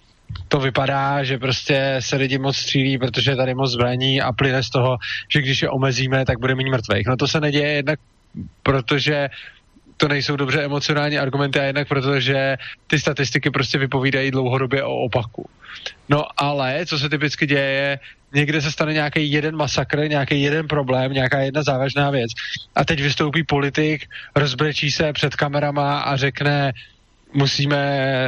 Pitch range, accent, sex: 130-145 Hz, native, male